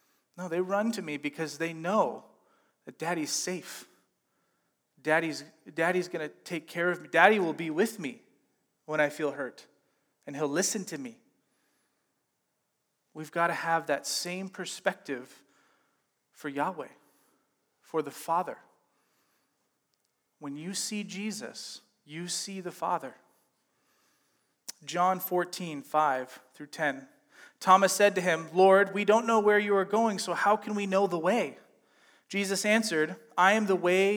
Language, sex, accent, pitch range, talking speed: English, male, American, 165-220 Hz, 145 wpm